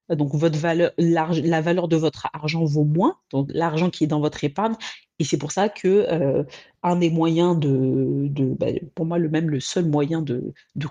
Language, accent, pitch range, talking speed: French, French, 150-175 Hz, 210 wpm